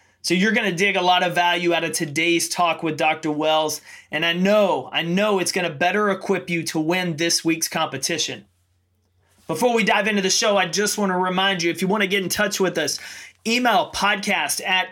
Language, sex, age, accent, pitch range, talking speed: English, male, 30-49, American, 165-200 Hz, 225 wpm